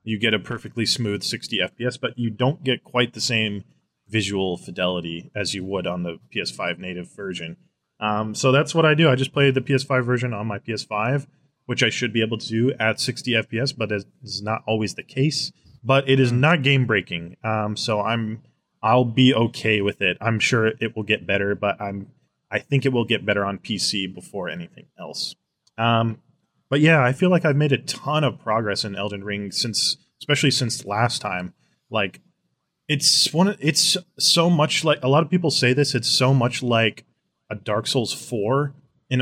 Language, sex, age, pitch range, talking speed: English, male, 20-39, 105-130 Hz, 200 wpm